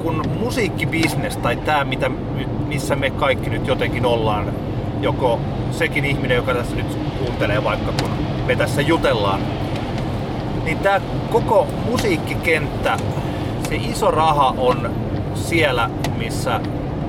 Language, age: Finnish, 30-49